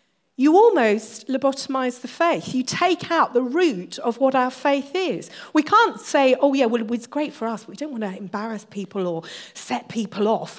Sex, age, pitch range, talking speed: female, 40-59, 210-275 Hz, 205 wpm